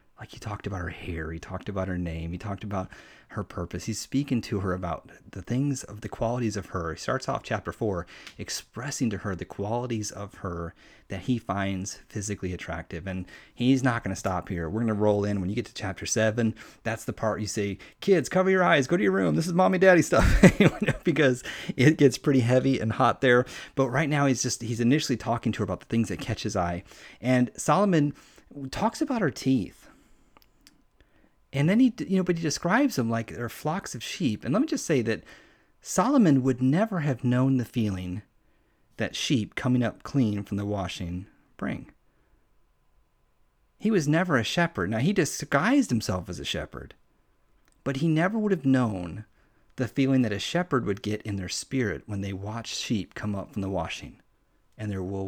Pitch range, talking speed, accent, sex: 95-135 Hz, 205 wpm, American, male